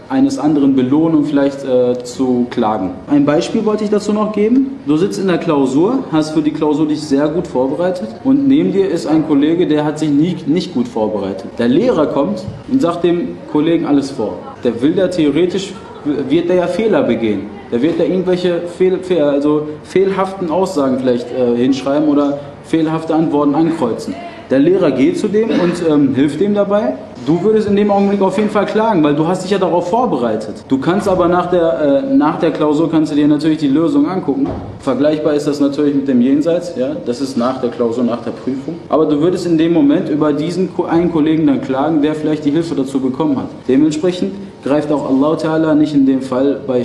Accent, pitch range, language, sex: German, 140-195 Hz, German, male